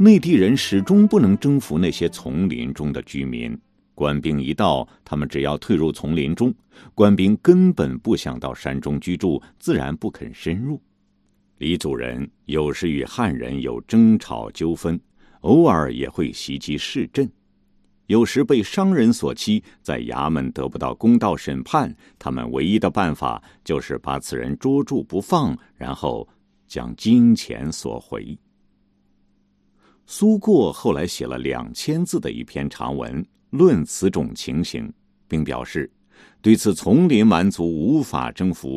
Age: 50-69